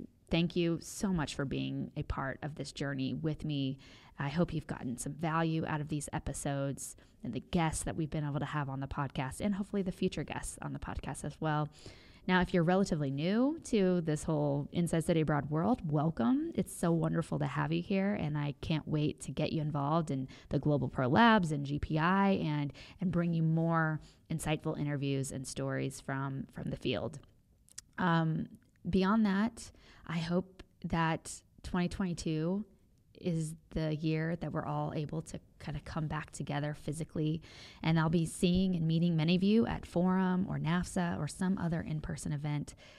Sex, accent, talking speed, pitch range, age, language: female, American, 185 wpm, 145-175 Hz, 20-39, English